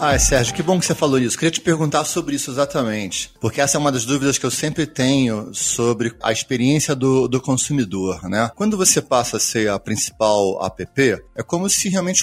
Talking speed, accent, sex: 210 wpm, Brazilian, male